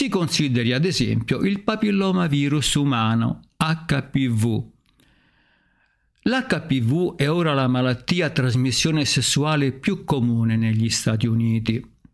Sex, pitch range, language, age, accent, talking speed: male, 120-155 Hz, Italian, 50-69, native, 100 wpm